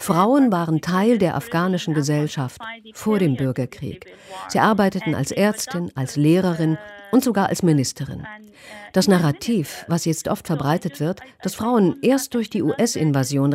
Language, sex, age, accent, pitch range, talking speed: German, female, 50-69, German, 145-220 Hz, 140 wpm